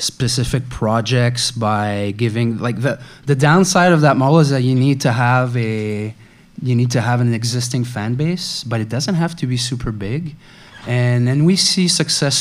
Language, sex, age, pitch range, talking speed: English, male, 20-39, 120-140 Hz, 190 wpm